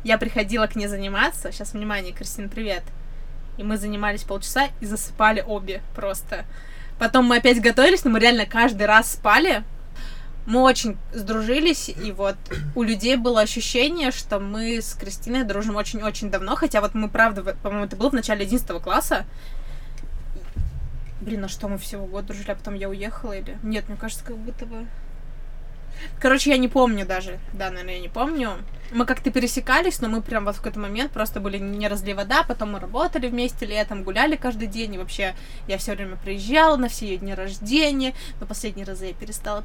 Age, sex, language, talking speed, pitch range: 20-39, female, Russian, 185 wpm, 205-255 Hz